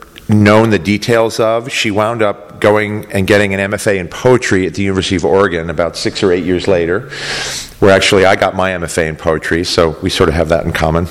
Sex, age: male, 40-59